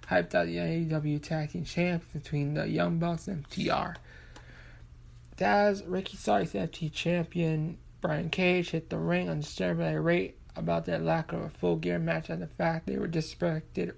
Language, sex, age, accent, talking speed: English, male, 20-39, American, 170 wpm